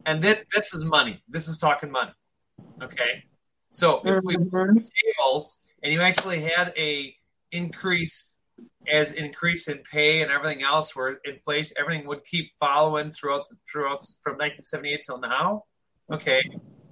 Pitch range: 150-185 Hz